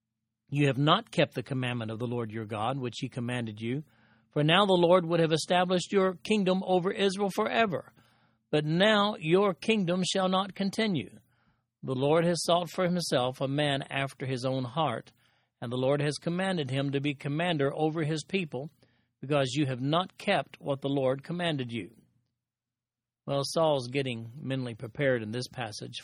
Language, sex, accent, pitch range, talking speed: English, male, American, 125-175 Hz, 175 wpm